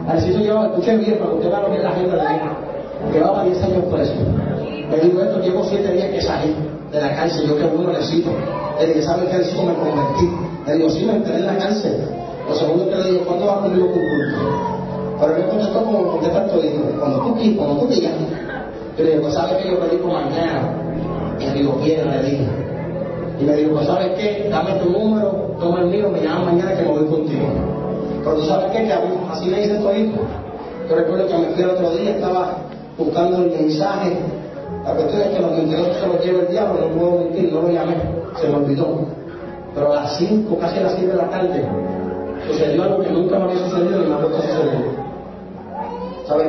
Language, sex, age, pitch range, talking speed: English, male, 30-49, 155-185 Hz, 240 wpm